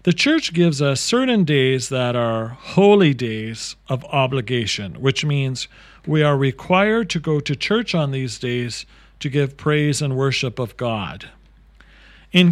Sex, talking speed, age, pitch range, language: male, 155 wpm, 40-59, 125-170 Hz, English